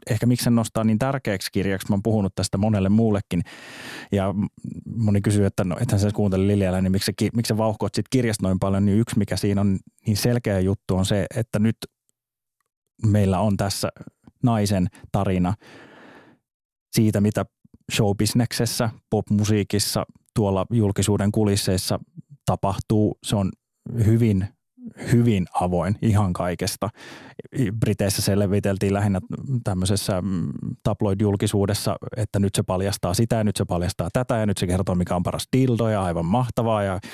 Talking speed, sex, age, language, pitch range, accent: 140 wpm, male, 20-39, Finnish, 100-115 Hz, native